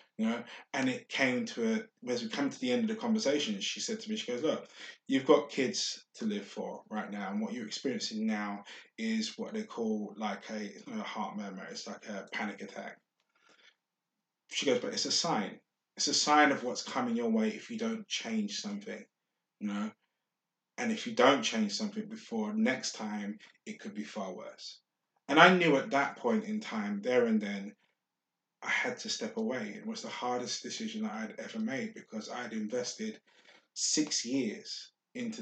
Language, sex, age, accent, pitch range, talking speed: English, male, 20-39, British, 155-230 Hz, 200 wpm